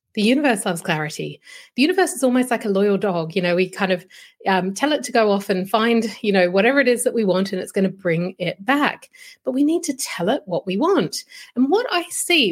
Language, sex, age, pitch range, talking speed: English, female, 30-49, 190-290 Hz, 255 wpm